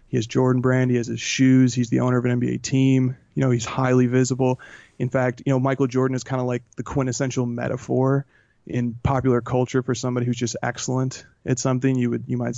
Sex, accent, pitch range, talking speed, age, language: male, American, 120-130 Hz, 225 wpm, 30-49, English